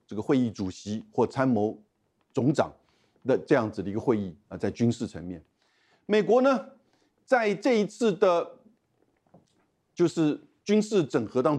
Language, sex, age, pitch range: Chinese, male, 50-69, 115-180 Hz